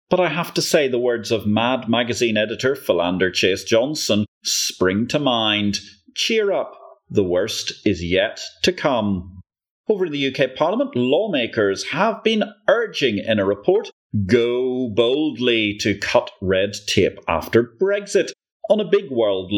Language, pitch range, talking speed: English, 105-160 Hz, 150 wpm